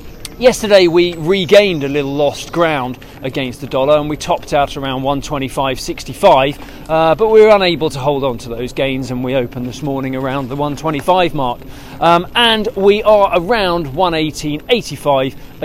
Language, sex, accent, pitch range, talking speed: English, male, British, 140-195 Hz, 155 wpm